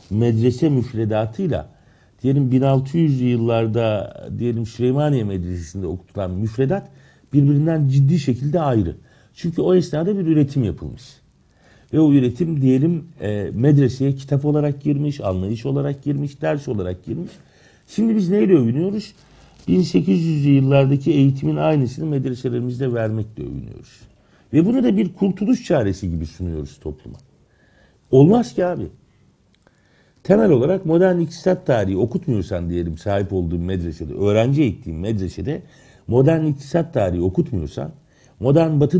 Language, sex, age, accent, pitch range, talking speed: Turkish, male, 50-69, native, 105-160 Hz, 120 wpm